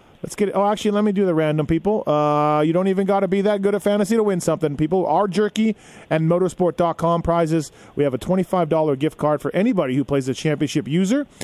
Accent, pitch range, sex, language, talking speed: American, 145-185 Hz, male, English, 230 wpm